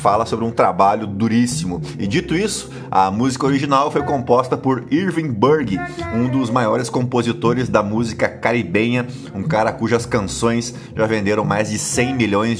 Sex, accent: male, Brazilian